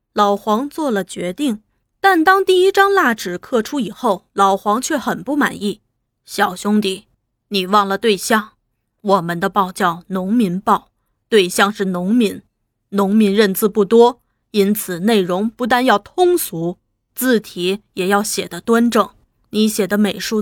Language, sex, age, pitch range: Chinese, female, 20-39, 195-235 Hz